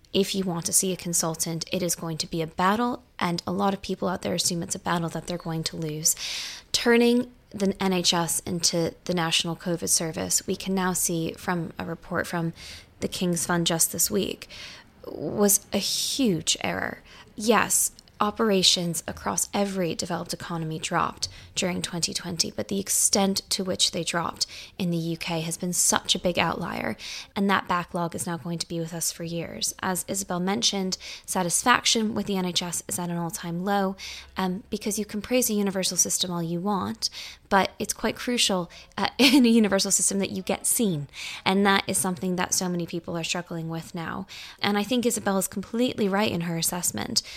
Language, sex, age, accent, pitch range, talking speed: English, female, 20-39, American, 170-200 Hz, 190 wpm